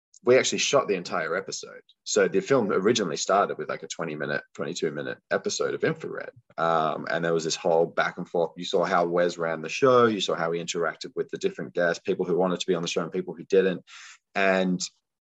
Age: 20-39